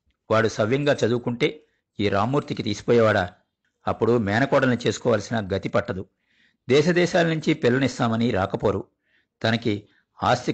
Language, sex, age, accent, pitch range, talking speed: Telugu, male, 50-69, native, 105-130 Hz, 95 wpm